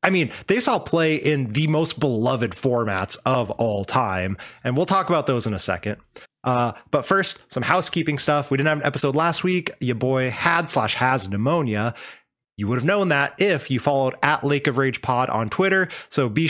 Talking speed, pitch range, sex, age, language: 205 wpm, 120-160 Hz, male, 20-39, English